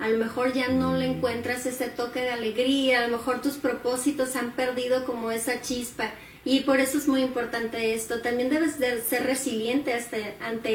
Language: Spanish